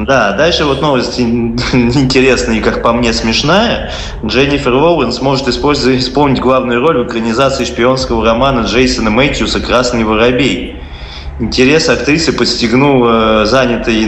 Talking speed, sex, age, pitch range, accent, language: 120 wpm, male, 20-39, 105-130 Hz, native, Russian